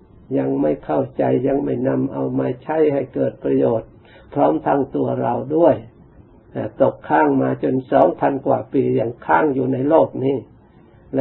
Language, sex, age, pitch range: Thai, male, 60-79, 110-140 Hz